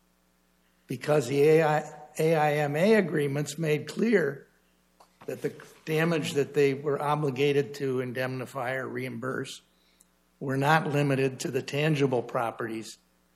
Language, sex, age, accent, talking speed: English, male, 60-79, American, 110 wpm